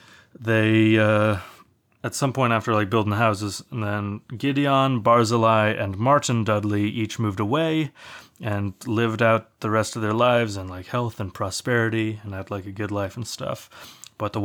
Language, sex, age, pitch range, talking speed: English, male, 30-49, 105-120 Hz, 180 wpm